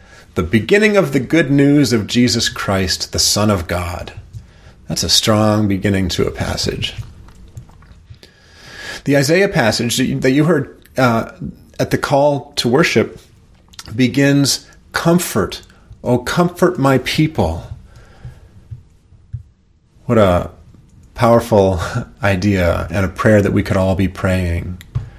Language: English